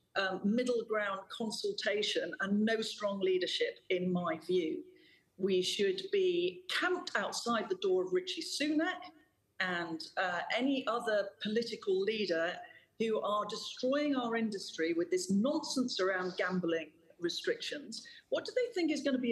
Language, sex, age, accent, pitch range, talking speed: English, female, 40-59, British, 185-290 Hz, 145 wpm